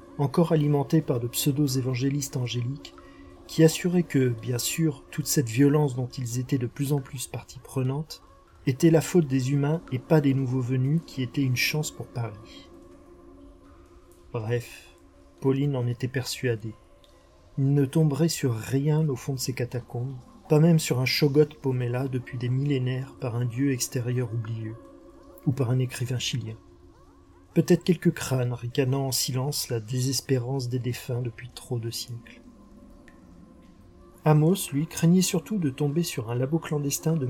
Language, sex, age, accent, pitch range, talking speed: French, male, 40-59, French, 125-150 Hz, 160 wpm